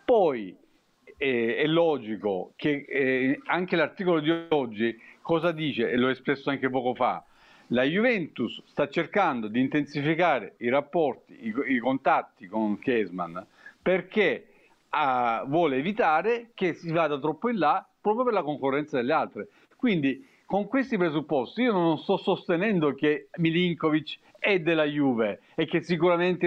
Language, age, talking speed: Italian, 50-69, 145 wpm